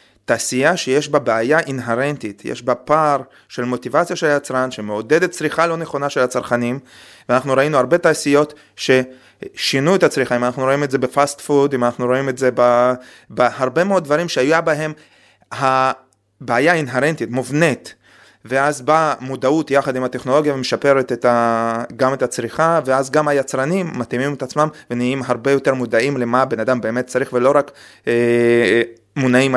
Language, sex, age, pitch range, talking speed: Hebrew, male, 30-49, 120-145 Hz, 145 wpm